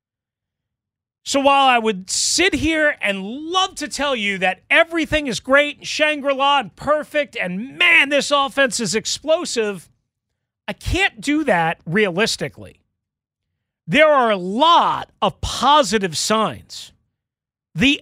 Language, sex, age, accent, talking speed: English, male, 40-59, American, 125 wpm